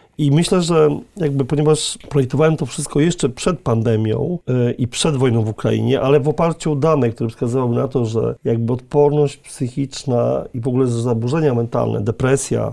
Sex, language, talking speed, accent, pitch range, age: male, Polish, 165 wpm, native, 125-145 Hz, 40-59